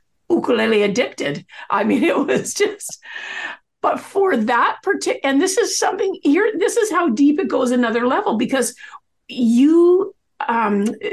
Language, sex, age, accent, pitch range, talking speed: English, female, 50-69, American, 220-290 Hz, 140 wpm